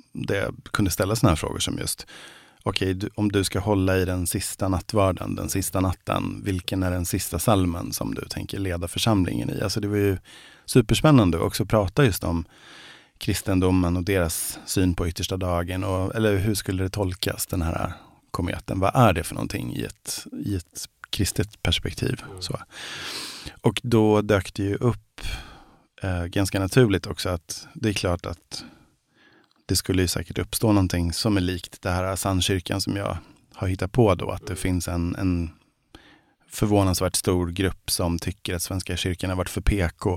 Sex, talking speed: male, 180 wpm